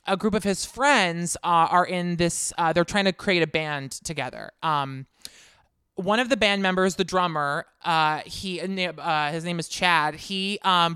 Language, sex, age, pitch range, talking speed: English, male, 20-39, 165-200 Hz, 185 wpm